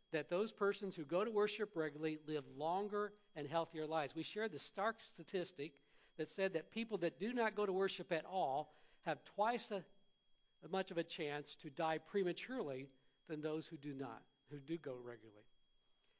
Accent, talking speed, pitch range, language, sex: American, 180 wpm, 150-195 Hz, English, male